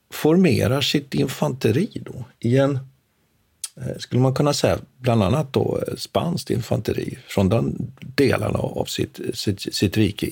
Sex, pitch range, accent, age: male, 100-135 Hz, native, 60-79